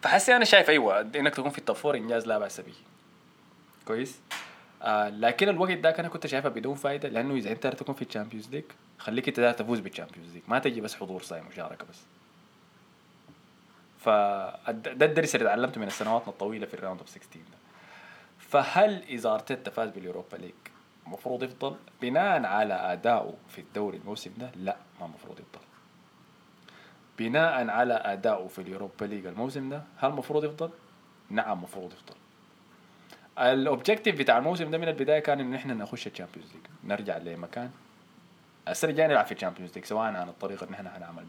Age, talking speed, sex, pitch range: 20-39, 165 wpm, male, 100-150 Hz